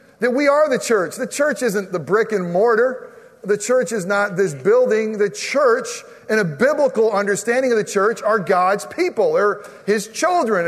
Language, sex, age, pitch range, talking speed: English, male, 40-59, 175-225 Hz, 185 wpm